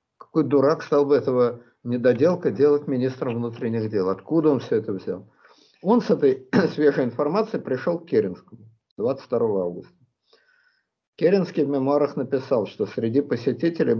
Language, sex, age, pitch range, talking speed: Russian, male, 50-69, 115-155 Hz, 140 wpm